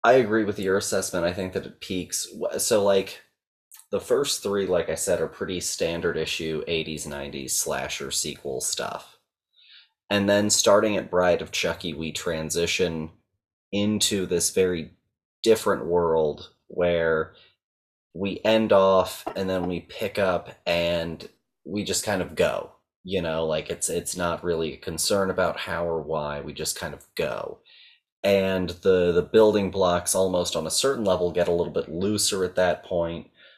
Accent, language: American, English